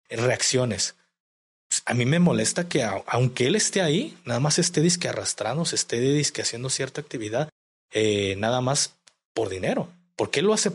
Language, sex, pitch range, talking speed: Spanish, male, 120-175 Hz, 165 wpm